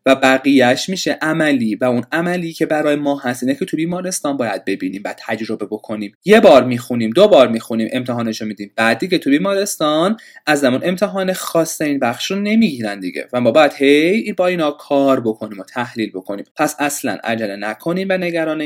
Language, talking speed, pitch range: Persian, 175 wpm, 120-190 Hz